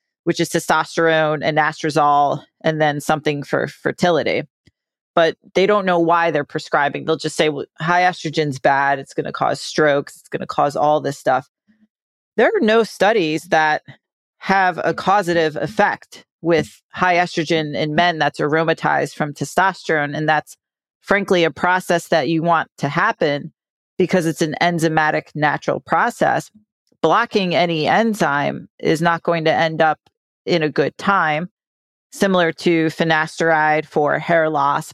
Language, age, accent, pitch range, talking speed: English, 40-59, American, 155-190 Hz, 155 wpm